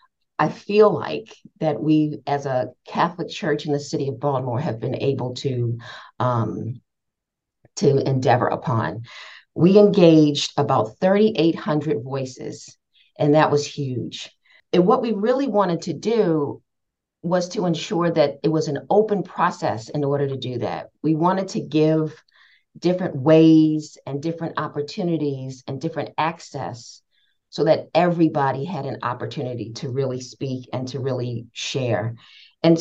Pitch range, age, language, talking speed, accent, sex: 140-170 Hz, 40-59, English, 140 wpm, American, female